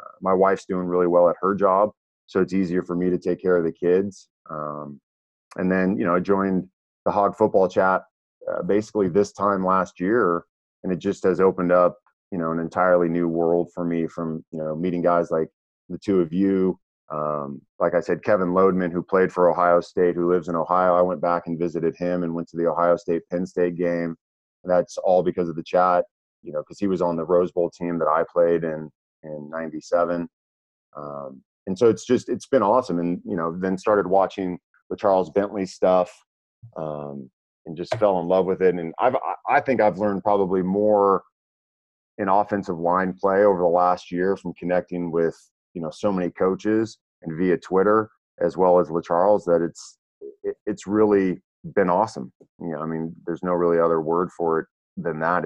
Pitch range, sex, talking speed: 85-95 Hz, male, 205 wpm